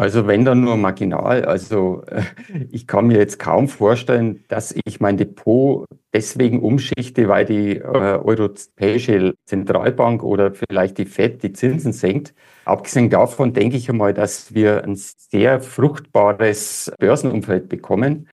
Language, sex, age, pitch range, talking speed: German, male, 50-69, 105-135 Hz, 135 wpm